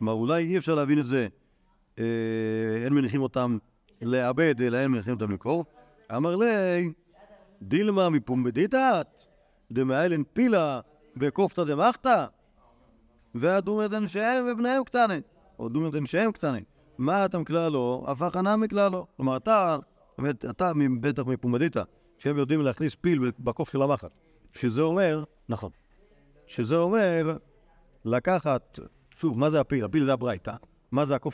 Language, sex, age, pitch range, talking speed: Hebrew, male, 40-59, 130-185 Hz, 140 wpm